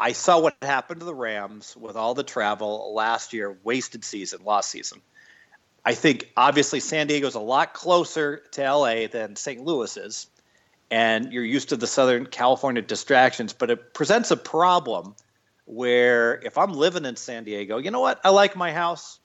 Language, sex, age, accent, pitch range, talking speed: English, male, 40-59, American, 110-150 Hz, 180 wpm